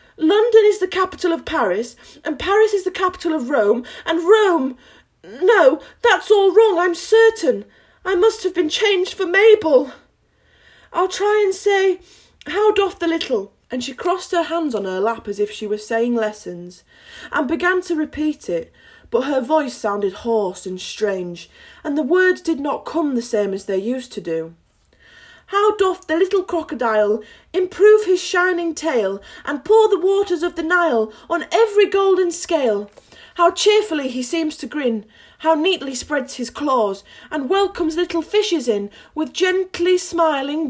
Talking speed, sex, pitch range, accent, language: 170 wpm, female, 245-370 Hz, British, English